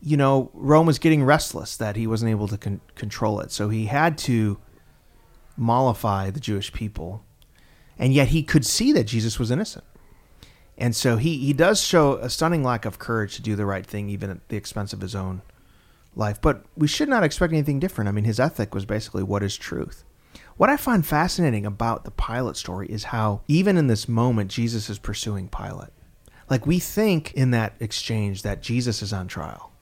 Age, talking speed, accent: 30-49, 200 wpm, American